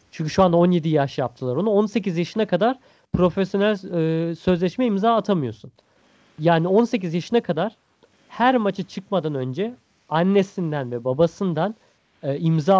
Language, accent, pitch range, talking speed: Turkish, native, 150-190 Hz, 130 wpm